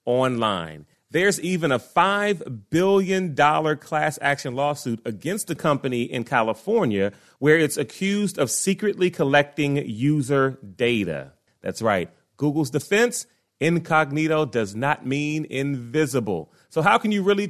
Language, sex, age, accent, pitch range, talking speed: English, male, 30-49, American, 120-165 Hz, 125 wpm